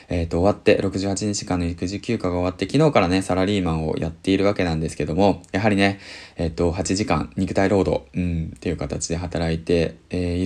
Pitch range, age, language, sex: 85-105 Hz, 20-39, Japanese, male